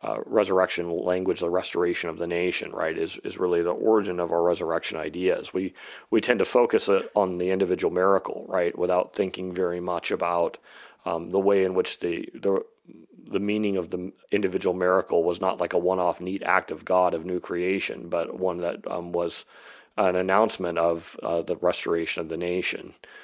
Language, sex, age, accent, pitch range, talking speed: English, male, 30-49, American, 90-100 Hz, 185 wpm